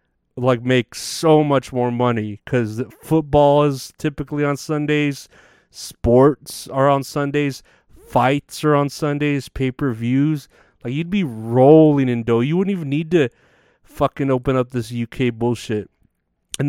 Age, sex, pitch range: 30-49, male, 120-150 Hz